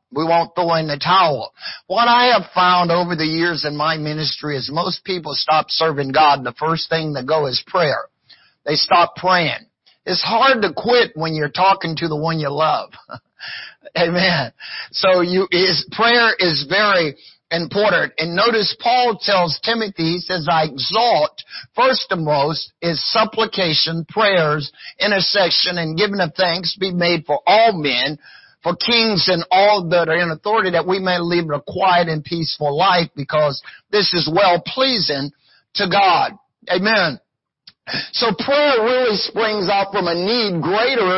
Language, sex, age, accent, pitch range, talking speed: English, male, 50-69, American, 160-200 Hz, 160 wpm